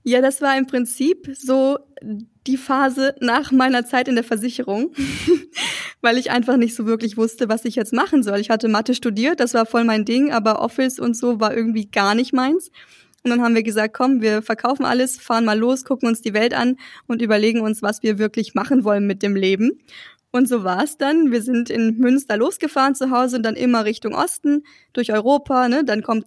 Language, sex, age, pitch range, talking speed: German, female, 20-39, 225-260 Hz, 210 wpm